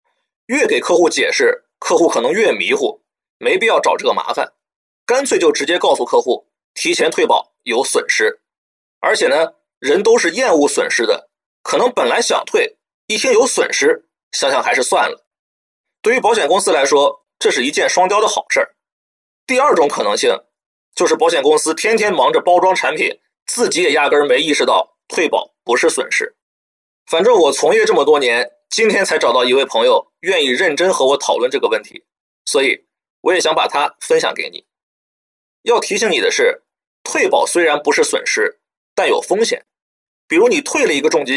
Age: 30-49